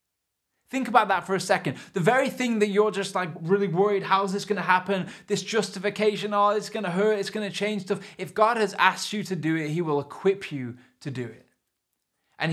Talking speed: 225 wpm